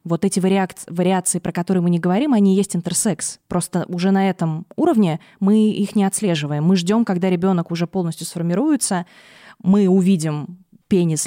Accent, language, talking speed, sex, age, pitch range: native, Russian, 165 wpm, female, 20-39, 170-205 Hz